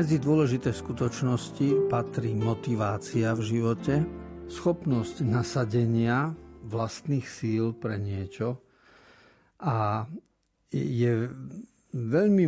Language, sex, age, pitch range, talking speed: Slovak, male, 50-69, 110-135 Hz, 75 wpm